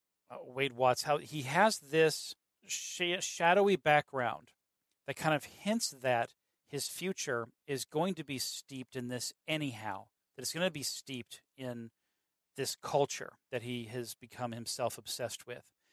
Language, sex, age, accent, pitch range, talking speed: English, male, 40-59, American, 125-150 Hz, 150 wpm